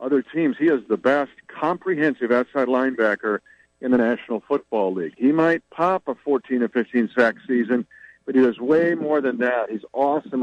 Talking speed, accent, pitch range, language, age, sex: 180 wpm, American, 115-155 Hz, English, 60-79, male